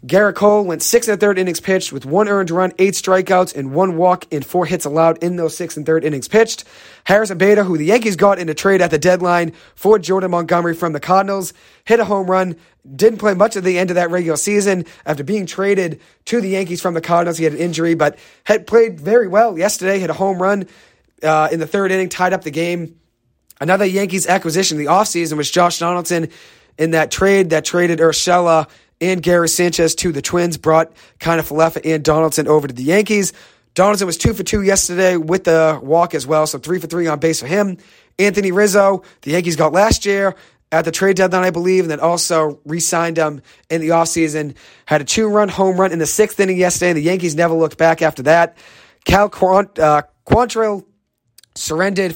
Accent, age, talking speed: American, 30-49, 215 wpm